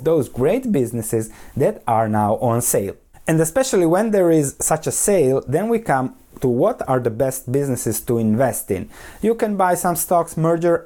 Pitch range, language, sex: 120-175 Hz, English, male